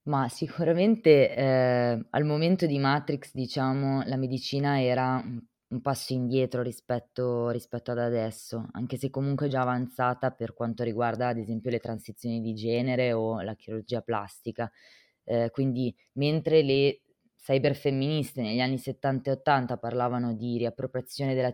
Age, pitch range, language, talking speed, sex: 20-39, 120-135 Hz, Italian, 140 wpm, female